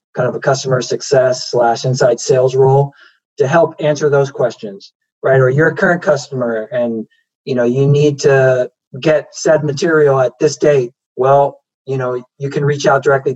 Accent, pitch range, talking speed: American, 130-155 Hz, 180 wpm